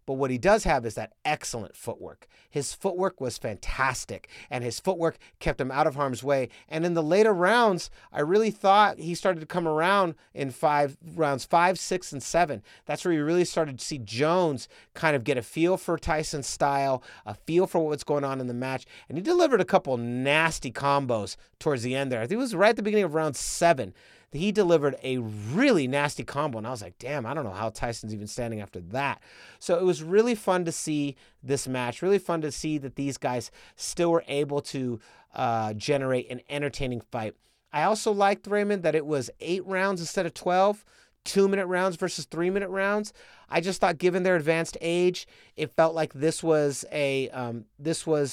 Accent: American